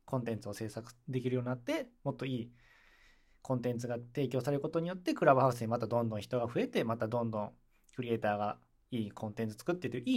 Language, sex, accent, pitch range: Japanese, male, native, 115-150 Hz